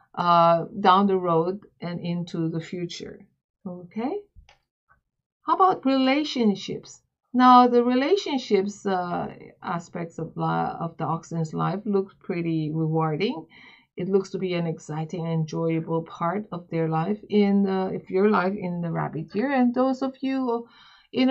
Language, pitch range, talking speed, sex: English, 180-230 Hz, 145 wpm, female